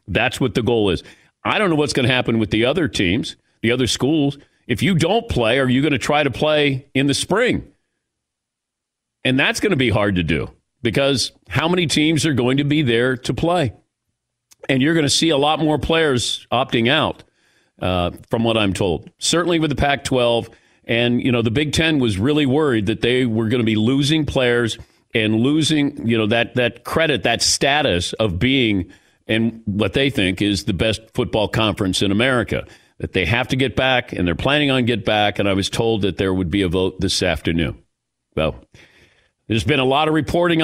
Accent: American